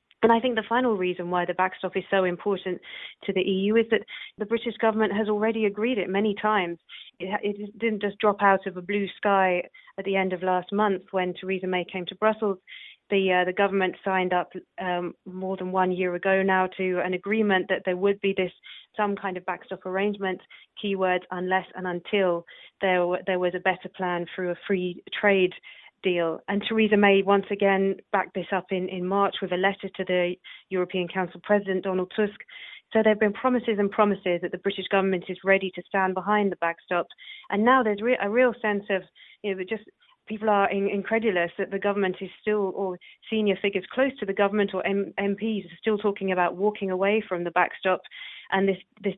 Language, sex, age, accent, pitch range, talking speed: English, female, 30-49, British, 185-205 Hz, 205 wpm